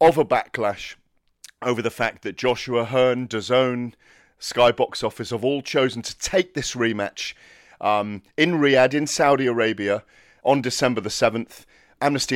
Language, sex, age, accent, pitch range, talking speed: English, male, 40-59, British, 105-125 Hz, 145 wpm